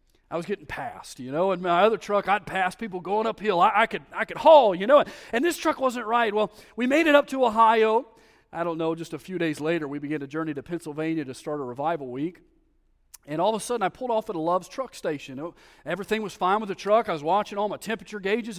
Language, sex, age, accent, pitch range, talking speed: English, male, 40-59, American, 160-230 Hz, 250 wpm